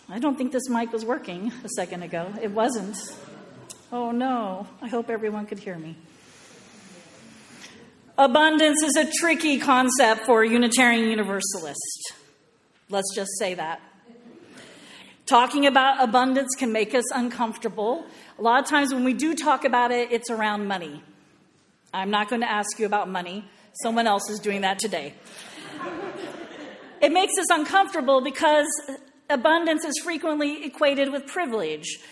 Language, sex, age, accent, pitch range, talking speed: English, female, 40-59, American, 215-275 Hz, 145 wpm